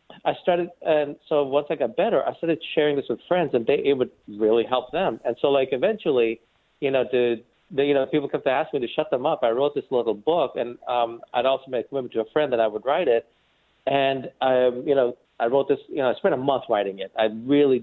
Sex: male